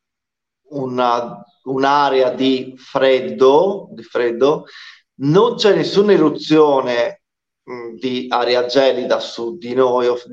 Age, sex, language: 30-49, male, Italian